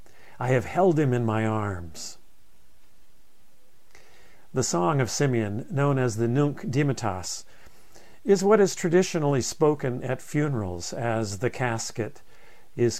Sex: male